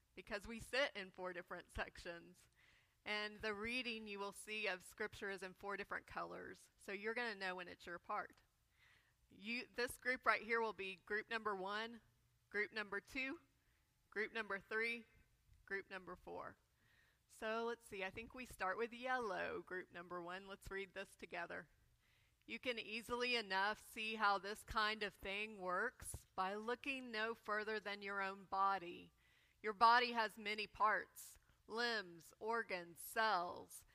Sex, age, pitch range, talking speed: female, 30-49, 195-230 Hz, 160 wpm